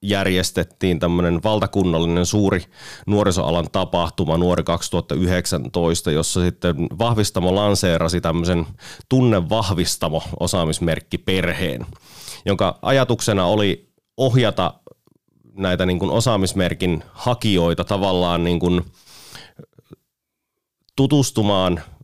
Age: 30-49